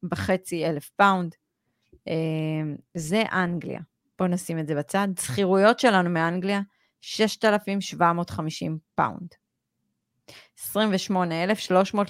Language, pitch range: Hebrew, 170-205 Hz